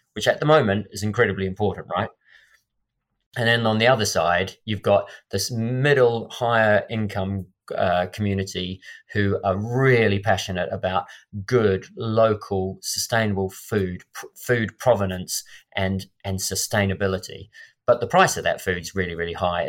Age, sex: 30-49, male